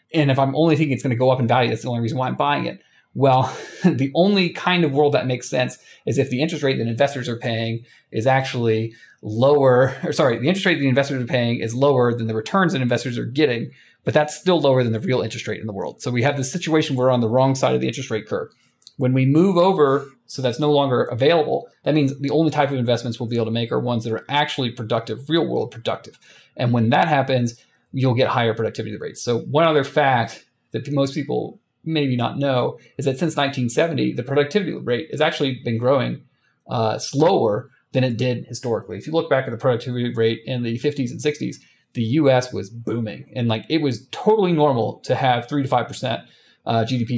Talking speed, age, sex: 235 wpm, 30-49, male